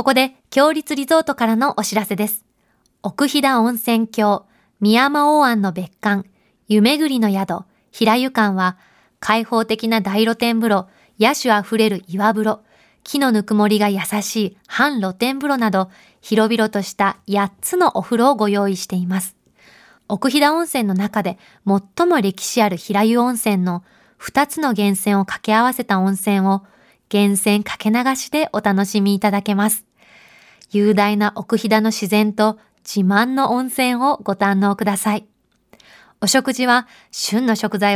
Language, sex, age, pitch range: Japanese, female, 20-39, 200-245 Hz